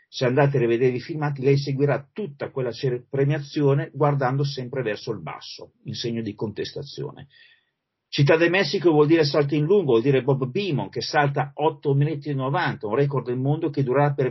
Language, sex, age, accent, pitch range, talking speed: Italian, male, 40-59, native, 130-155 Hz, 190 wpm